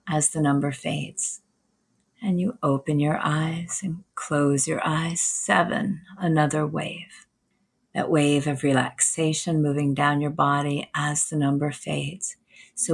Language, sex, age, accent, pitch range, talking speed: English, female, 40-59, American, 145-170 Hz, 135 wpm